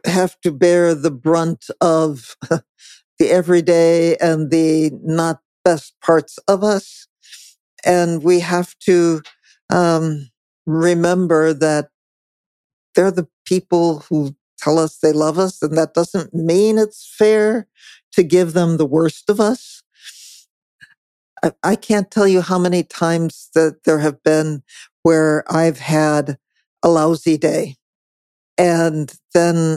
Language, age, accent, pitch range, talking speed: English, 60-79, American, 155-185 Hz, 130 wpm